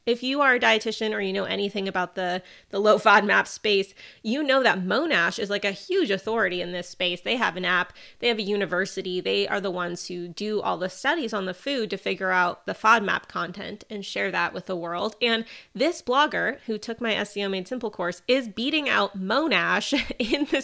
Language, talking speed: English, 220 wpm